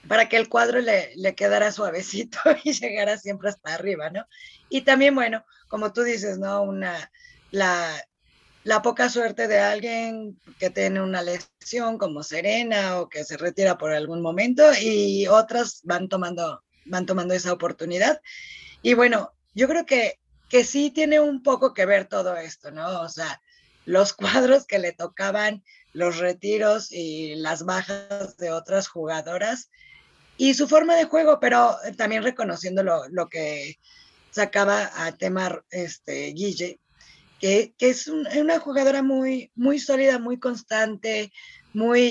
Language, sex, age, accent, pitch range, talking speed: Spanish, female, 20-39, Mexican, 185-255 Hz, 150 wpm